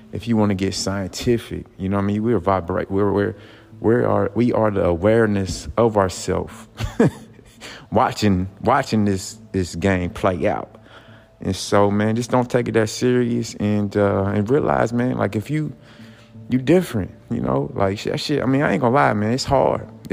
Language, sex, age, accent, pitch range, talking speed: English, male, 30-49, American, 95-120 Hz, 190 wpm